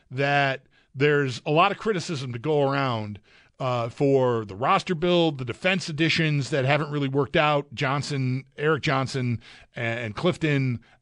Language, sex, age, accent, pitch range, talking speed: English, male, 40-59, American, 135-180 Hz, 150 wpm